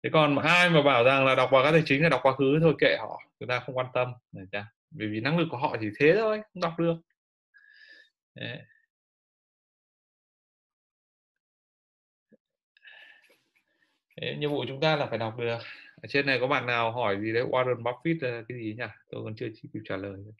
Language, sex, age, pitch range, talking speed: Vietnamese, male, 20-39, 110-160 Hz, 210 wpm